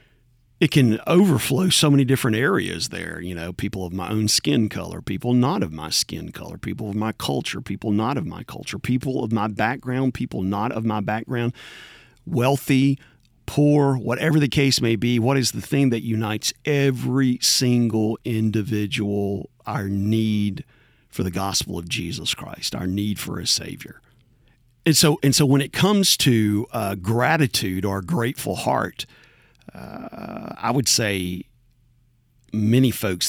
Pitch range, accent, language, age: 100-125 Hz, American, English, 50-69